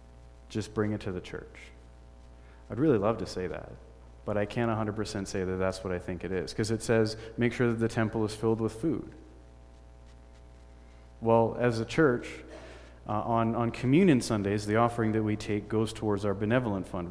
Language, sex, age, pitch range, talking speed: English, male, 30-49, 85-115 Hz, 195 wpm